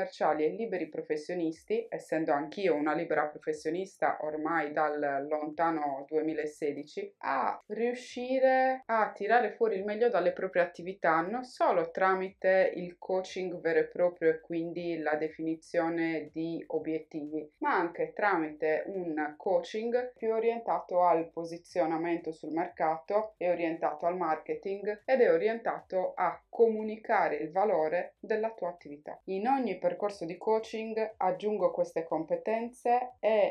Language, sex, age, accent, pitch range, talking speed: Italian, female, 20-39, native, 160-215 Hz, 125 wpm